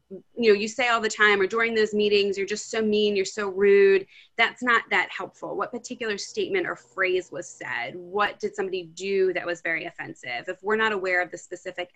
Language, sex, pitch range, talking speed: English, female, 170-220 Hz, 220 wpm